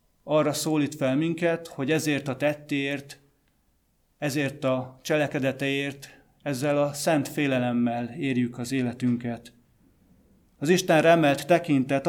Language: Hungarian